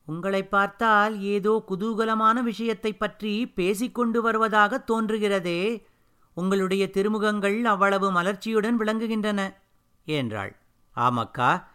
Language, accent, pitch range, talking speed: Tamil, native, 165-205 Hz, 80 wpm